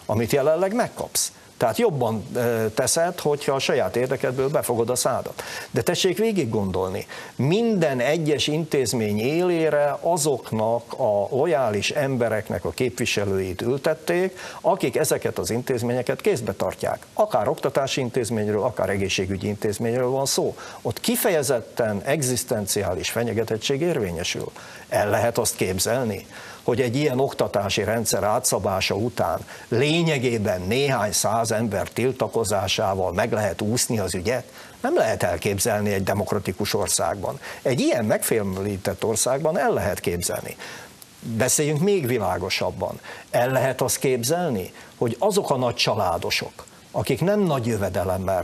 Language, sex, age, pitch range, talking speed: Hungarian, male, 60-79, 105-150 Hz, 120 wpm